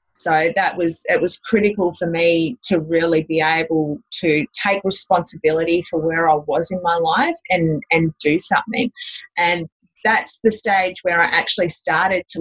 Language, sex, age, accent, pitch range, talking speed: English, female, 30-49, Australian, 170-235 Hz, 170 wpm